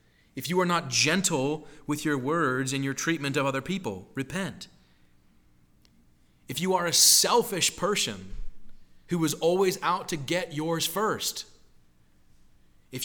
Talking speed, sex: 140 wpm, male